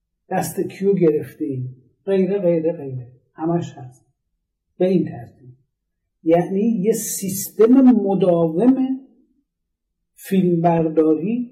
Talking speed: 85 wpm